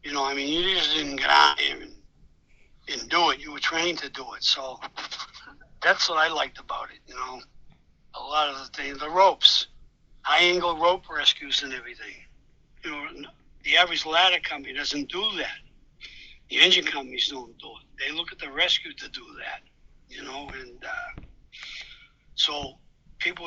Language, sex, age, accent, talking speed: English, male, 60-79, American, 175 wpm